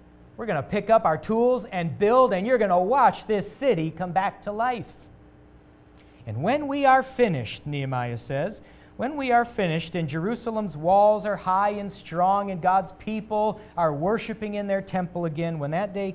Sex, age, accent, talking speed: male, 40-59, American, 185 wpm